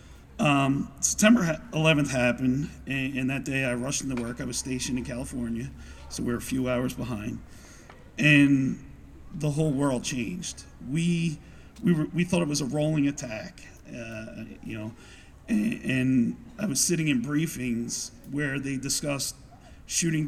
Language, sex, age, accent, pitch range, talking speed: English, male, 40-59, American, 120-145 Hz, 155 wpm